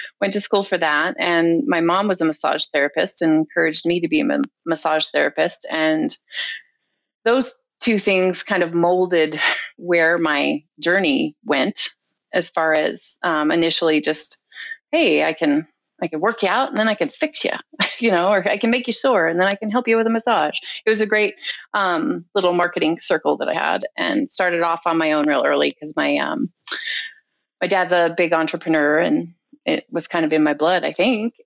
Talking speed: 200 wpm